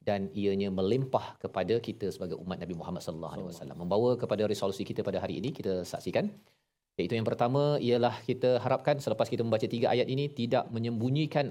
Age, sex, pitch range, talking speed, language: 40-59, male, 105-135 Hz, 180 wpm, Malayalam